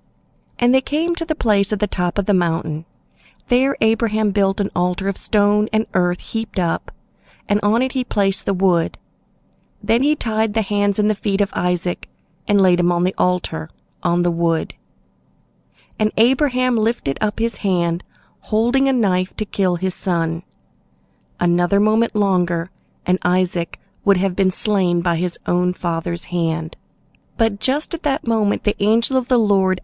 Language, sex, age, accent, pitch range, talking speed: English, female, 40-59, American, 175-220 Hz, 175 wpm